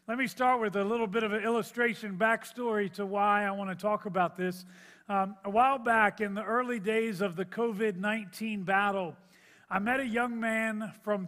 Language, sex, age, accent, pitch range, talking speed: English, male, 40-59, American, 195-235 Hz, 195 wpm